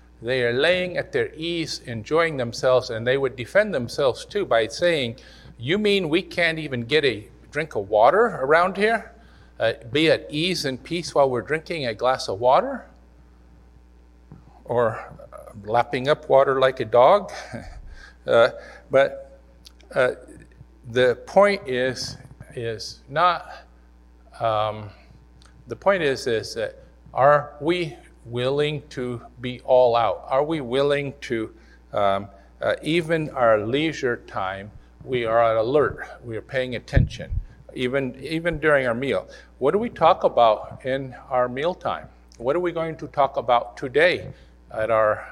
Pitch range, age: 105-150 Hz, 50-69